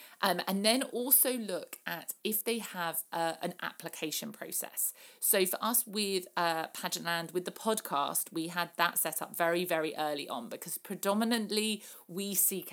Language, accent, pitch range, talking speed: English, British, 160-205 Hz, 165 wpm